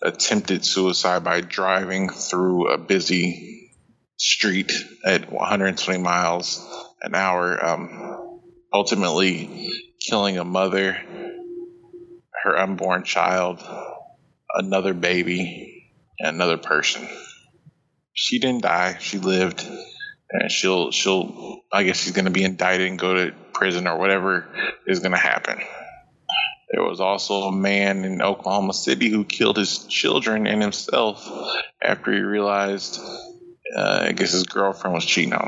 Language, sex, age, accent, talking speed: English, male, 20-39, American, 130 wpm